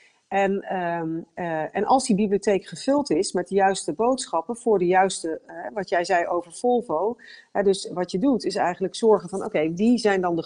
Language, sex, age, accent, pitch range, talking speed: Dutch, female, 40-59, Dutch, 155-205 Hz, 200 wpm